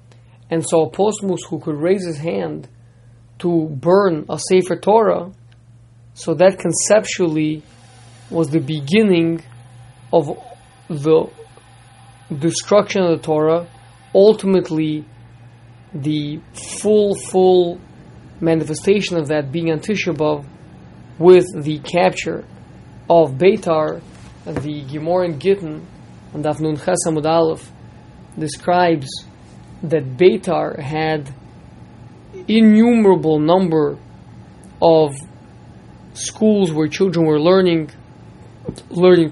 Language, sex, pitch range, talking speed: English, male, 140-175 Hz, 95 wpm